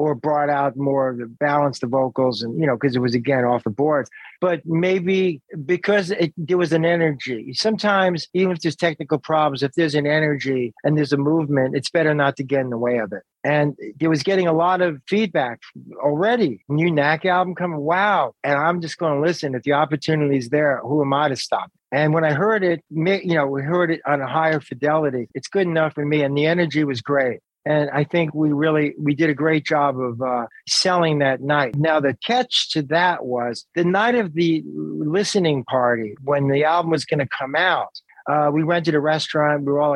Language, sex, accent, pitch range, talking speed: English, male, American, 140-165 Hz, 225 wpm